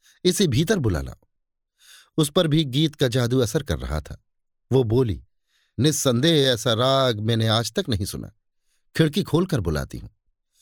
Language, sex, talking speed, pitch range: Hindi, male, 155 wpm, 105-145 Hz